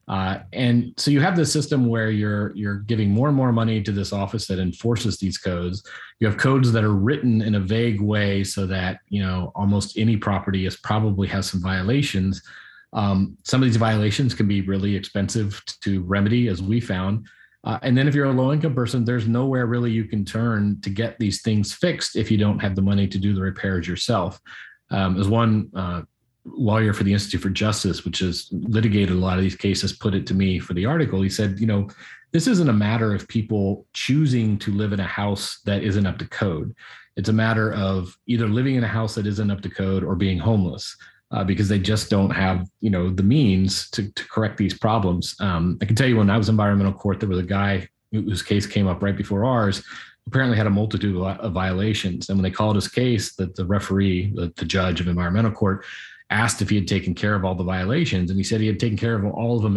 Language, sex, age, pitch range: English, male, 30-49, 95-110 Hz